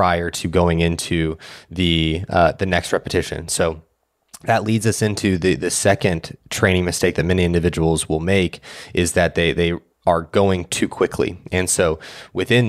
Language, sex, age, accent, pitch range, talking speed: English, male, 20-39, American, 80-95 Hz, 165 wpm